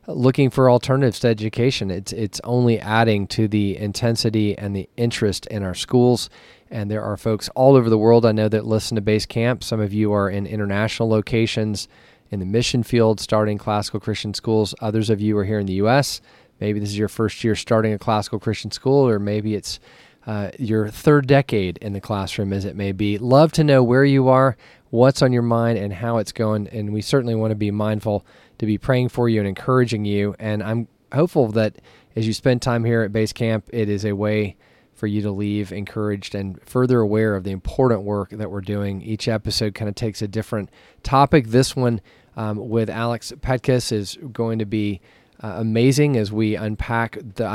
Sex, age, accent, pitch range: male, 20-39, American, 105-120 Hz